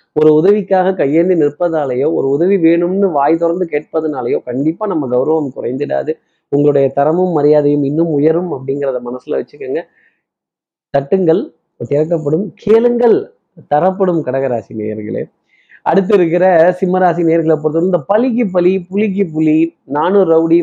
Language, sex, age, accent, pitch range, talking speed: Tamil, male, 20-39, native, 140-180 Hz, 115 wpm